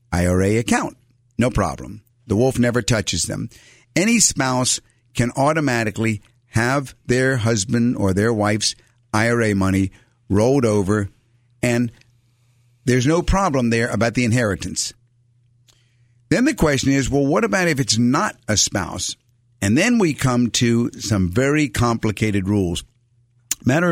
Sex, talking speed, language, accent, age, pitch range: male, 135 wpm, English, American, 50-69, 110-135 Hz